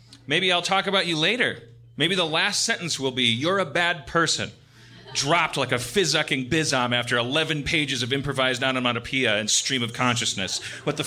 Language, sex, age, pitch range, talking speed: English, male, 30-49, 120-155 Hz, 180 wpm